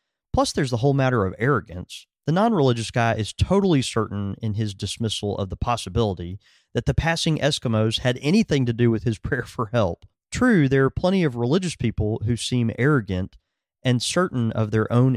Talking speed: 185 wpm